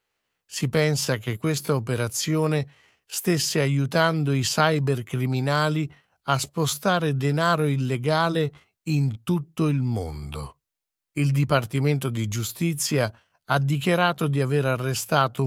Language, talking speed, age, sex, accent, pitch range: English, 100 wpm, 50-69, male, Italian, 125-150 Hz